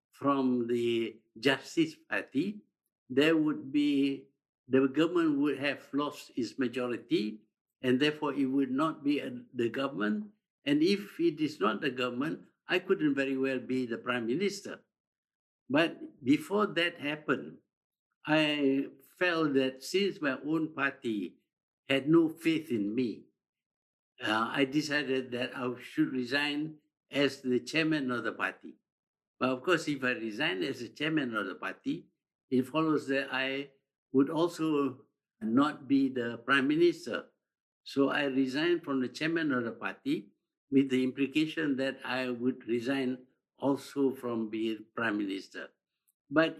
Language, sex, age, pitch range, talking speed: English, male, 60-79, 125-160 Hz, 145 wpm